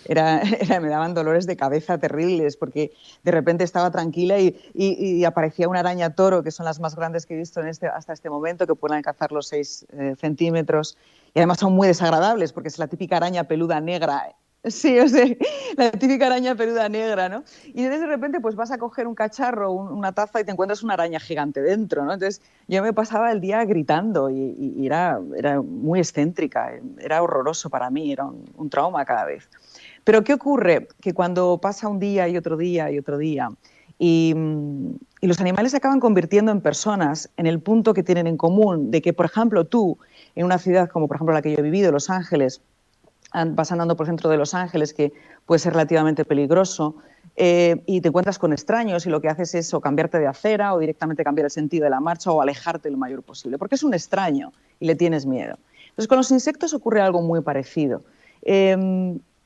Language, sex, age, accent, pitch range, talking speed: Portuguese, female, 30-49, Spanish, 155-210 Hz, 215 wpm